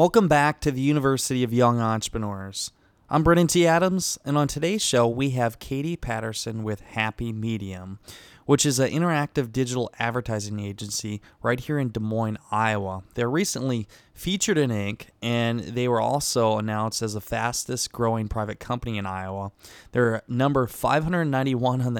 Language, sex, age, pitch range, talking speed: English, male, 20-39, 110-135 Hz, 155 wpm